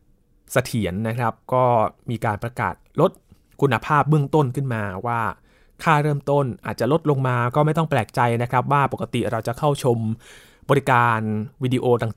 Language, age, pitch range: Thai, 20-39, 110-145 Hz